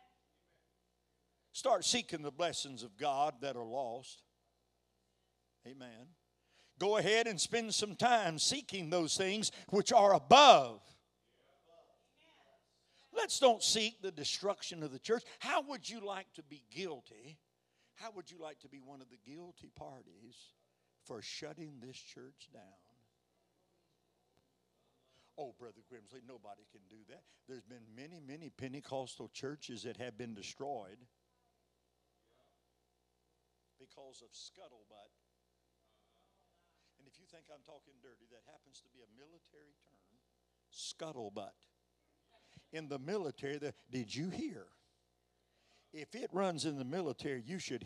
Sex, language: male, English